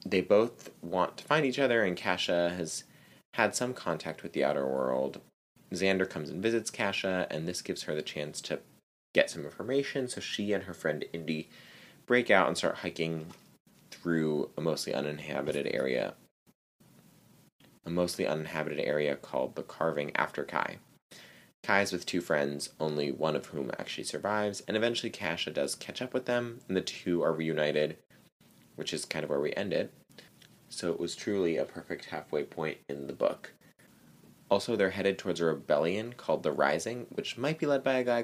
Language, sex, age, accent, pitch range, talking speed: English, male, 30-49, American, 75-110 Hz, 180 wpm